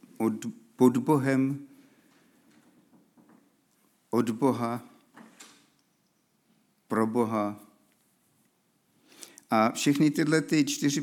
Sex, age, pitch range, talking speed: male, 50-69, 115-150 Hz, 55 wpm